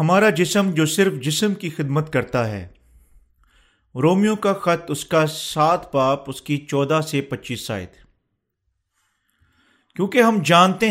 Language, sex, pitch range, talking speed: Urdu, male, 135-185 Hz, 140 wpm